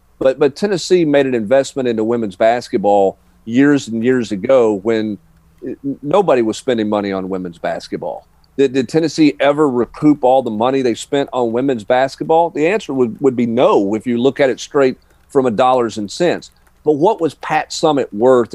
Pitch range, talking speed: 110-140 Hz, 185 wpm